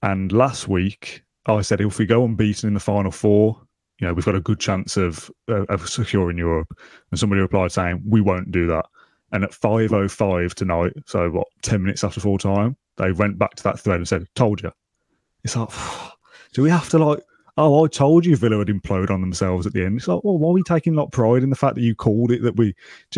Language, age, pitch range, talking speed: English, 20-39, 95-120 Hz, 245 wpm